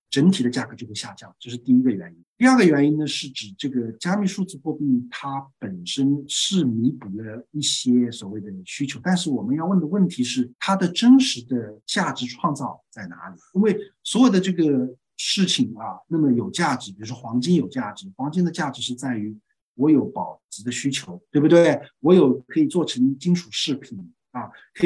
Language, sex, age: Chinese, male, 50-69